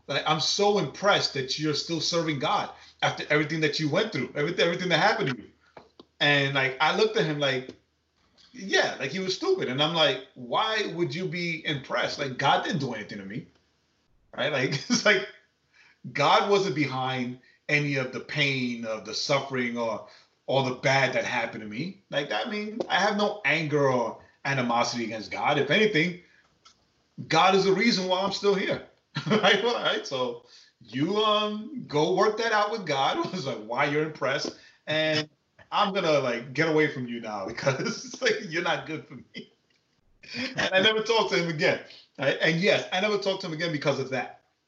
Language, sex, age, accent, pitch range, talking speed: English, male, 30-49, American, 130-190 Hz, 195 wpm